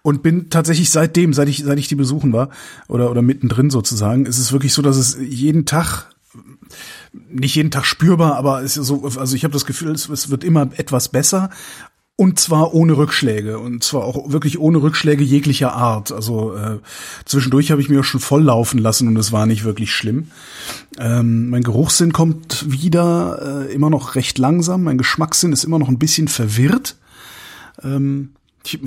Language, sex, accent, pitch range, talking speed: German, male, German, 125-150 Hz, 185 wpm